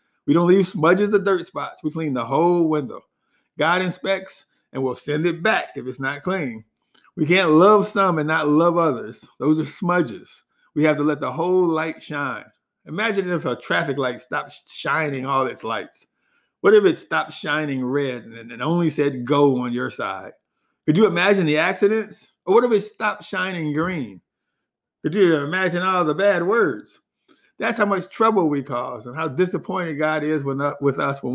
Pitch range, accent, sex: 140-190 Hz, American, male